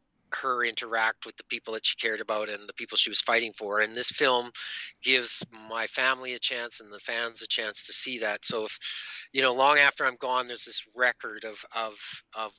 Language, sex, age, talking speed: English, male, 30-49, 220 wpm